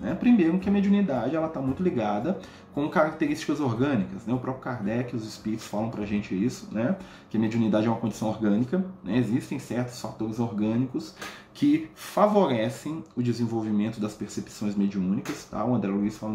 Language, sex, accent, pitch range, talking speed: Portuguese, male, Brazilian, 115-155 Hz, 170 wpm